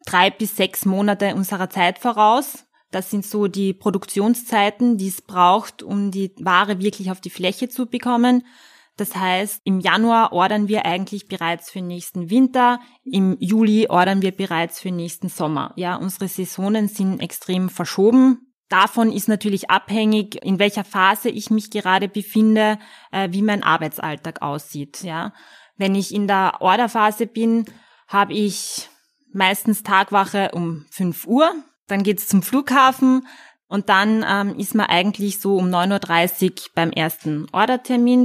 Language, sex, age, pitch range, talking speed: German, female, 20-39, 185-220 Hz, 155 wpm